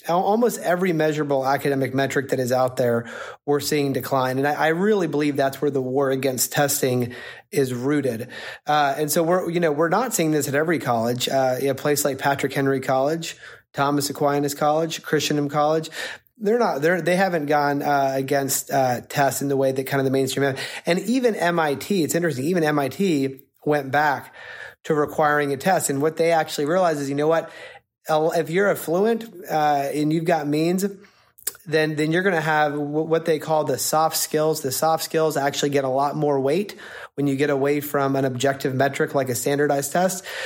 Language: English